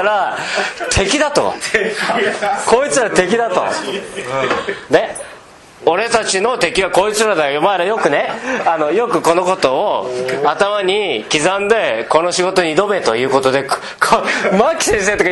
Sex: male